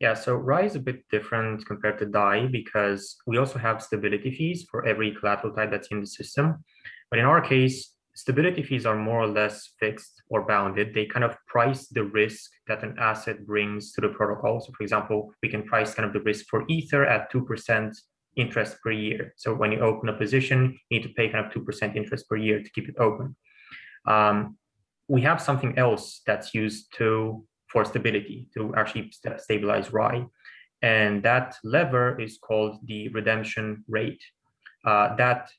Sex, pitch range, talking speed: male, 110-130 Hz, 190 wpm